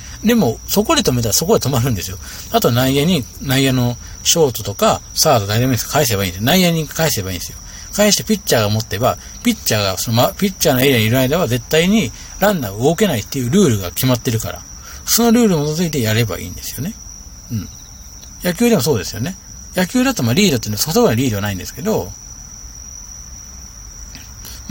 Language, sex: Japanese, male